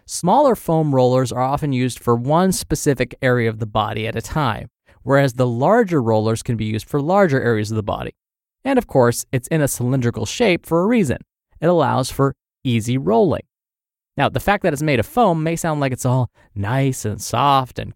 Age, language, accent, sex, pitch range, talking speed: 20-39, English, American, male, 115-170 Hz, 205 wpm